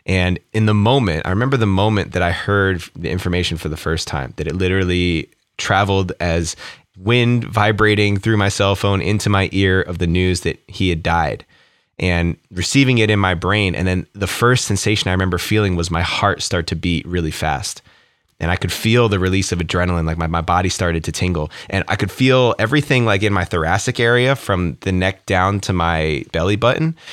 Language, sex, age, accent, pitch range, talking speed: English, male, 20-39, American, 90-120 Hz, 205 wpm